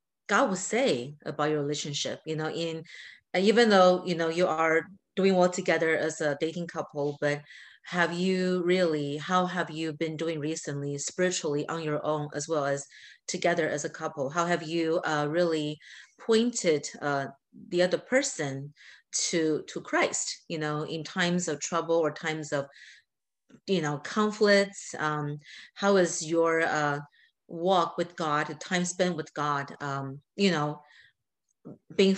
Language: English